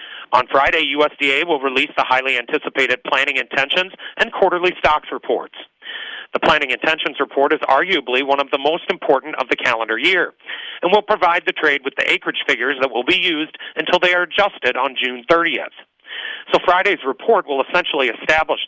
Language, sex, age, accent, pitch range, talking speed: English, male, 40-59, American, 135-180 Hz, 175 wpm